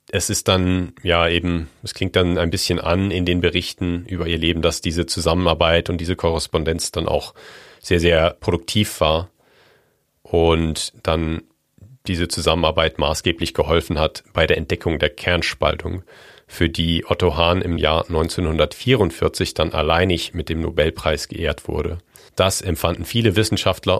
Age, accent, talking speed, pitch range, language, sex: 40-59, German, 150 wpm, 80-95 Hz, German, male